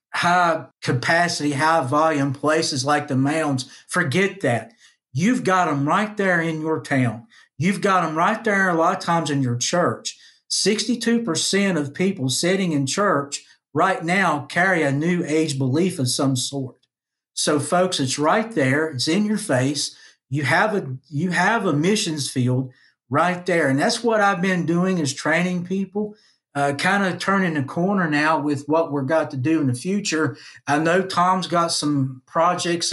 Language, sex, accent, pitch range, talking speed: English, male, American, 145-175 Hz, 175 wpm